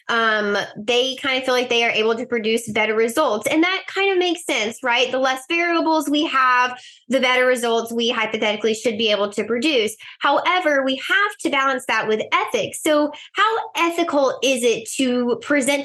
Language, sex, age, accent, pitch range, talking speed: English, female, 10-29, American, 225-290 Hz, 190 wpm